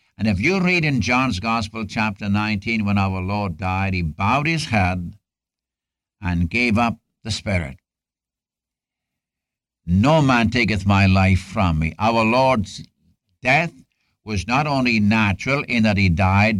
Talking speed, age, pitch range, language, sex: 145 wpm, 60-79, 95-120 Hz, English, male